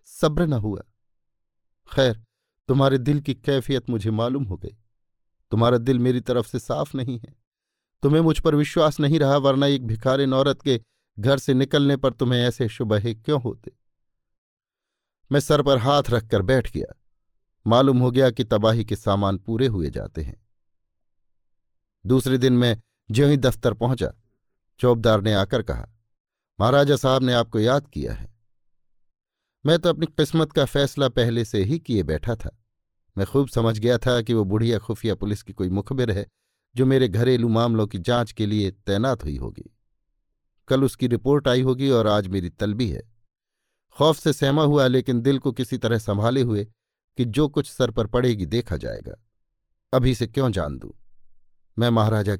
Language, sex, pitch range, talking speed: Hindi, male, 105-135 Hz, 170 wpm